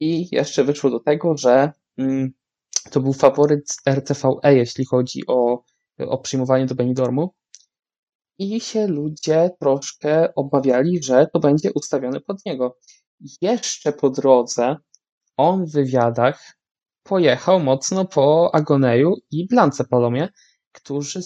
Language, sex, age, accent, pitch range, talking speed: Polish, male, 20-39, native, 130-160 Hz, 120 wpm